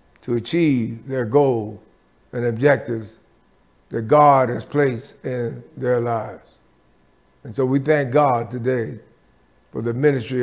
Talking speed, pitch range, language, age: 125 wpm, 120-150 Hz, English, 60-79